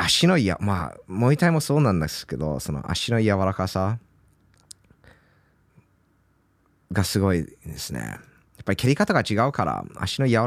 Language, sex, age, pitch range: Japanese, male, 20-39, 85-115 Hz